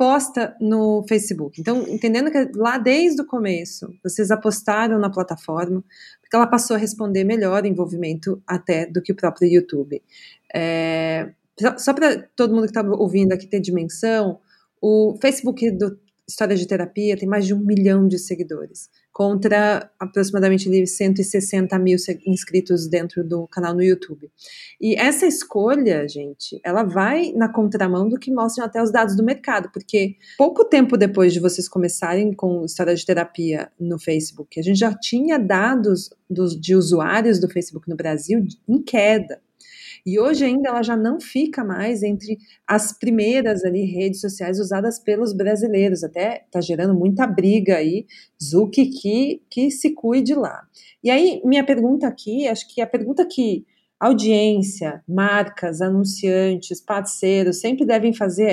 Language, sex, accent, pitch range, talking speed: Portuguese, female, Brazilian, 185-230 Hz, 155 wpm